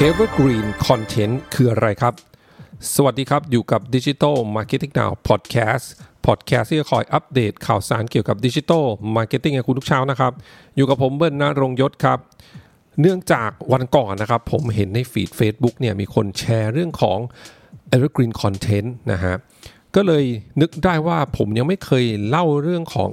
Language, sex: English, male